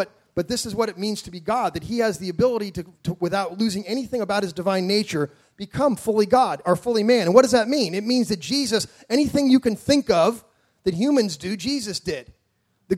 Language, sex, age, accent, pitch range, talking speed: English, male, 30-49, American, 175-230 Hz, 225 wpm